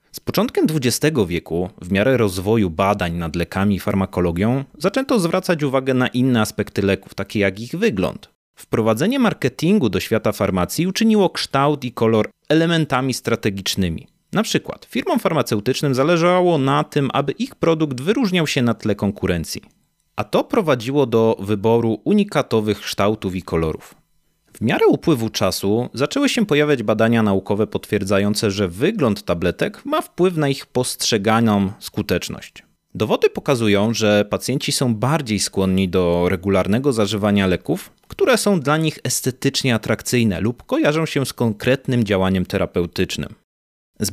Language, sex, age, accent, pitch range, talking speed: Polish, male, 30-49, native, 100-145 Hz, 140 wpm